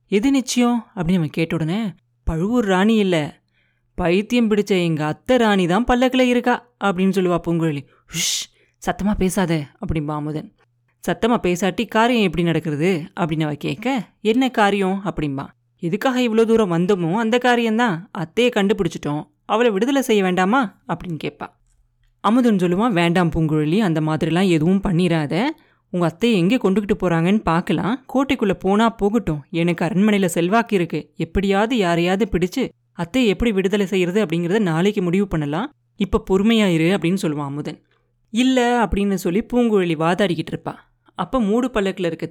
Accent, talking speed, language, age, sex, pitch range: native, 135 wpm, Tamil, 20-39, female, 165-220 Hz